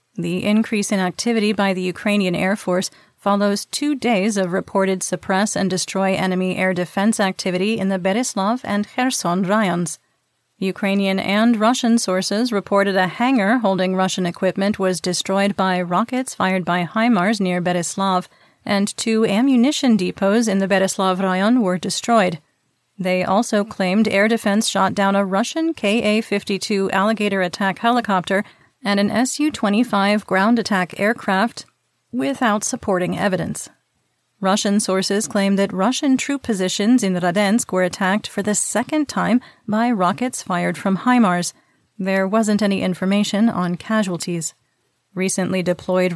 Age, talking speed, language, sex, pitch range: 40-59, 135 wpm, English, female, 185-220 Hz